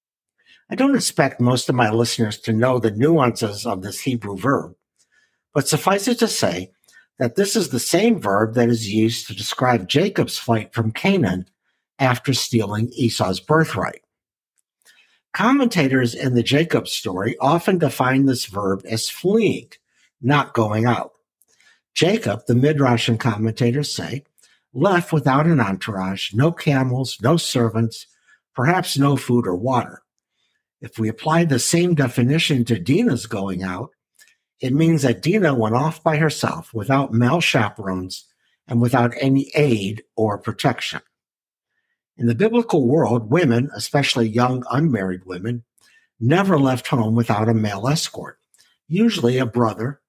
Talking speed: 140 wpm